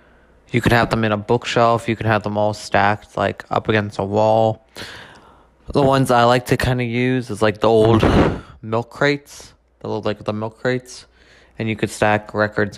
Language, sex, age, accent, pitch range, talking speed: English, male, 20-39, American, 100-115 Hz, 195 wpm